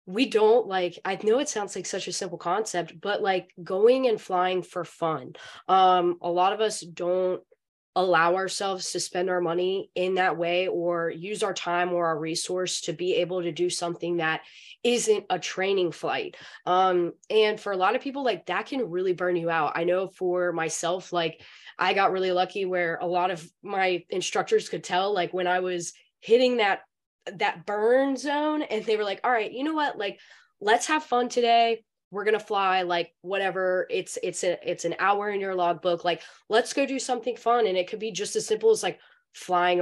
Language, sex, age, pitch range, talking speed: English, female, 10-29, 175-215 Hz, 205 wpm